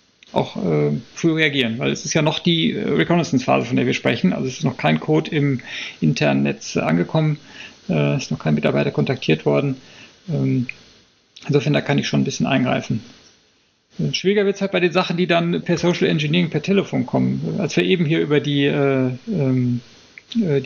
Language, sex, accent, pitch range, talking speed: German, male, German, 130-190 Hz, 195 wpm